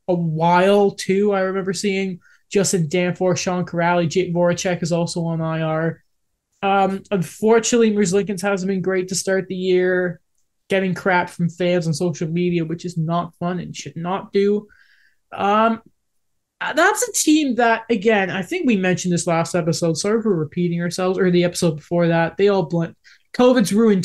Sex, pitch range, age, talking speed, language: male, 180-235 Hz, 20-39, 170 wpm, English